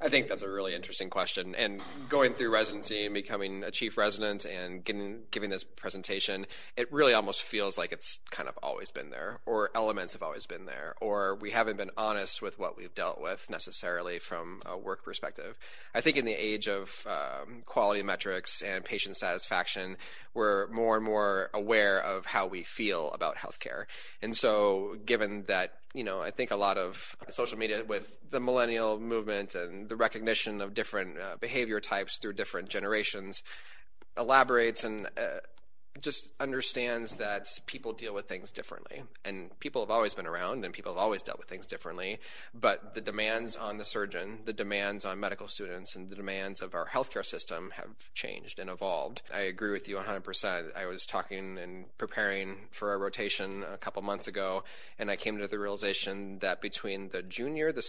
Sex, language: male, English